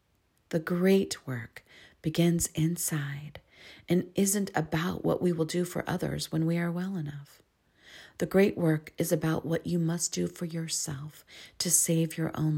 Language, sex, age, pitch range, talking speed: English, female, 40-59, 150-180 Hz, 160 wpm